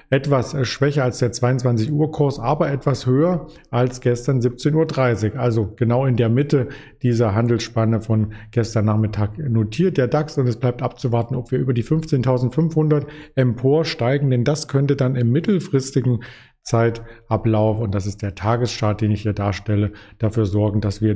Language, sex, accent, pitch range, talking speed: German, male, German, 110-140 Hz, 155 wpm